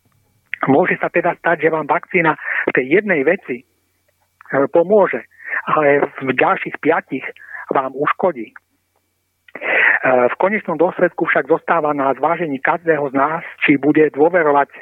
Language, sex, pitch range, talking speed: Czech, male, 145-170 Hz, 125 wpm